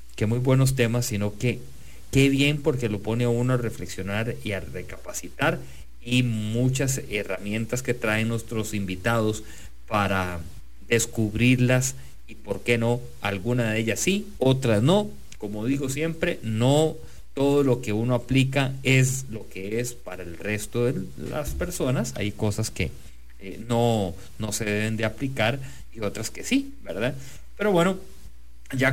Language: English